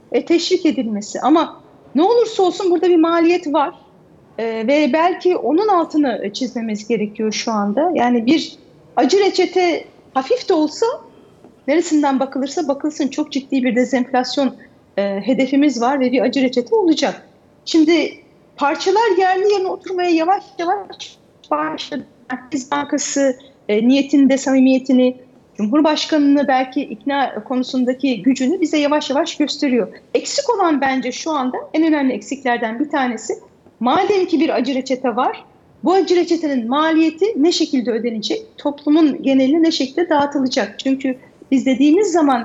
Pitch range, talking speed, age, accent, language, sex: 255-320 Hz, 135 wpm, 40-59, native, Turkish, female